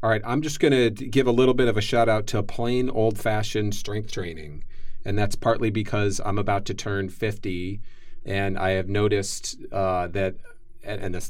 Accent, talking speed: American, 190 wpm